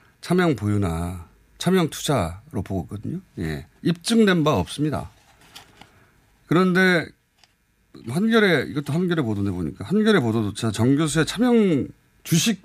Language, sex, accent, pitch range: Korean, male, native, 105-155 Hz